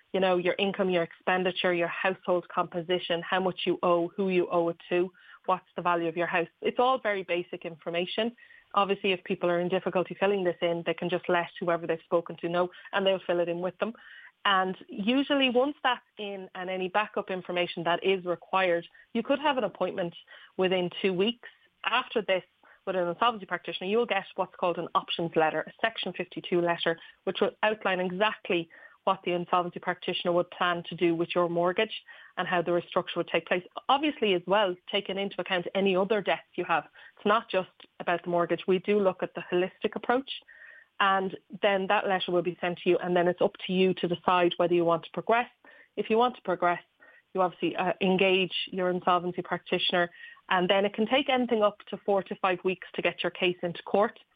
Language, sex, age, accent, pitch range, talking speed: English, female, 20-39, Irish, 175-205 Hz, 210 wpm